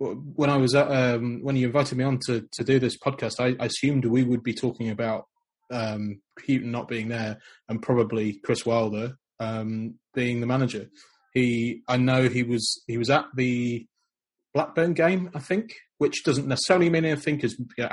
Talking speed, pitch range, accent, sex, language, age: 190 wpm, 110-125 Hz, British, male, English, 20-39